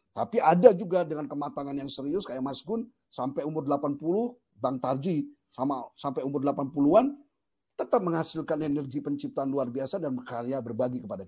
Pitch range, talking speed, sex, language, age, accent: 130-195 Hz, 155 wpm, male, English, 50-69, Indonesian